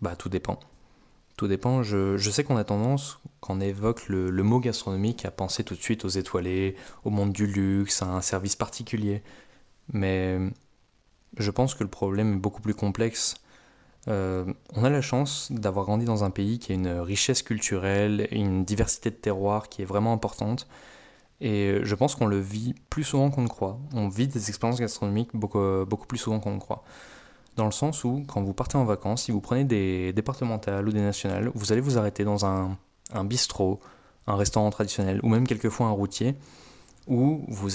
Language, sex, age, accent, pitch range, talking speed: French, male, 20-39, French, 95-115 Hz, 195 wpm